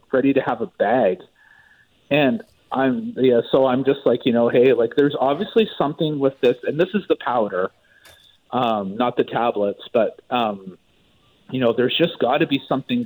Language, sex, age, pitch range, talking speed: English, male, 40-59, 105-135 Hz, 185 wpm